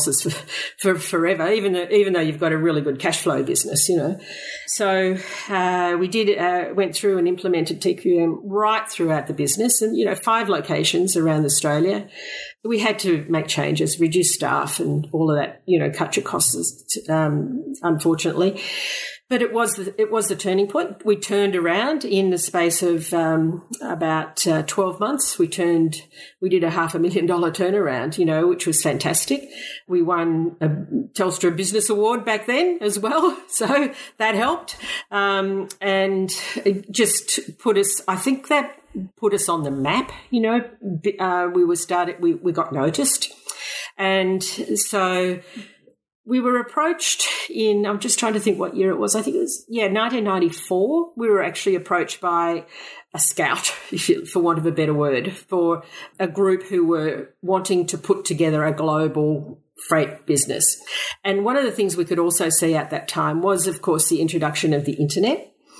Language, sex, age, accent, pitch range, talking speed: English, female, 50-69, Australian, 170-215 Hz, 180 wpm